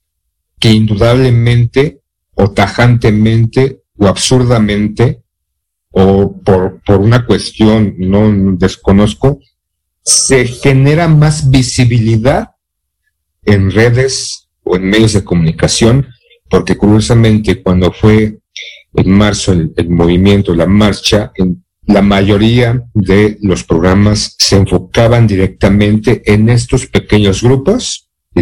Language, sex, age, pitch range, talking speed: Spanish, male, 50-69, 95-125 Hz, 100 wpm